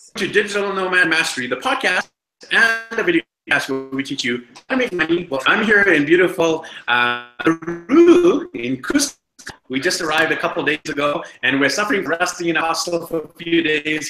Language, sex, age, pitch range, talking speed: English, male, 30-49, 135-185 Hz, 200 wpm